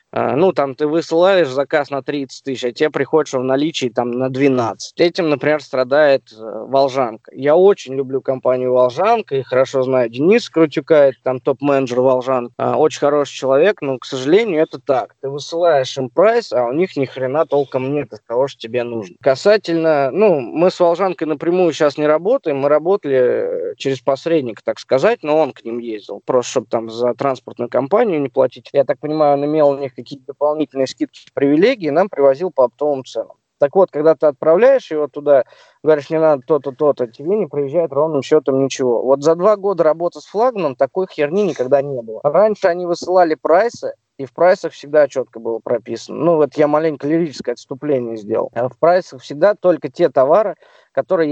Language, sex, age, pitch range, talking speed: Russian, male, 20-39, 130-165 Hz, 180 wpm